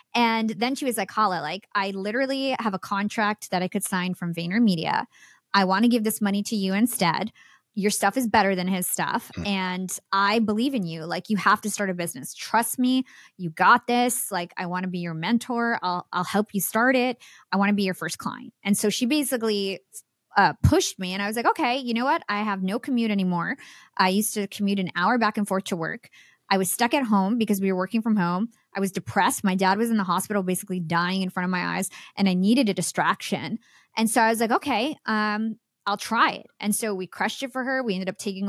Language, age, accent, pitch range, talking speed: English, 20-39, American, 190-235 Hz, 240 wpm